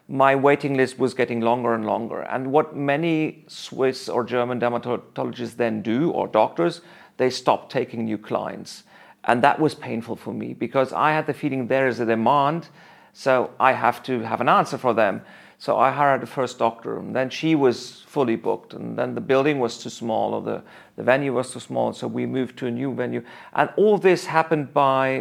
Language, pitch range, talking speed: English, 125-155 Hz, 205 wpm